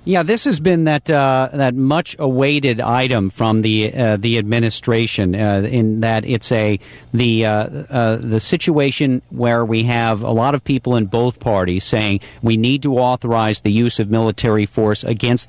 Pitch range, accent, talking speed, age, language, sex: 105-130 Hz, American, 175 wpm, 50-69, English, male